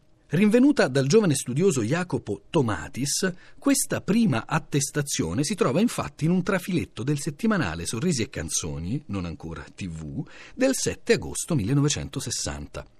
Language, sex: Italian, male